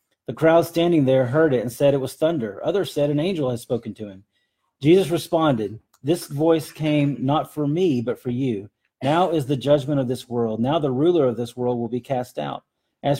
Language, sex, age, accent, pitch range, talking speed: English, male, 40-59, American, 120-155 Hz, 220 wpm